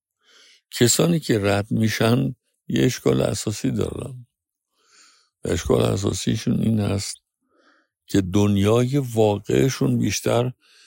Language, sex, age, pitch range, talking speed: Persian, male, 60-79, 90-125 Hz, 90 wpm